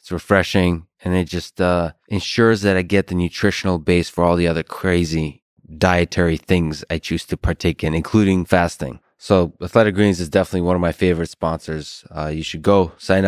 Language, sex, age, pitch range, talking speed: English, male, 20-39, 80-95 Hz, 185 wpm